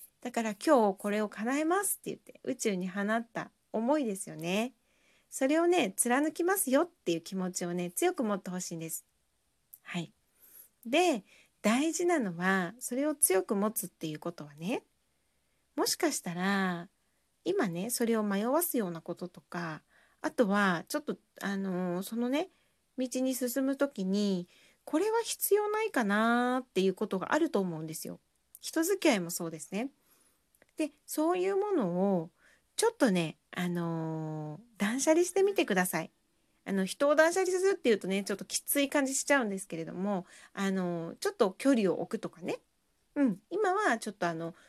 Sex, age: female, 40-59